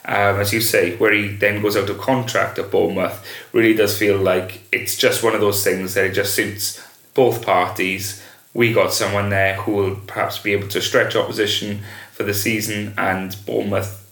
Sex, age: male, 30-49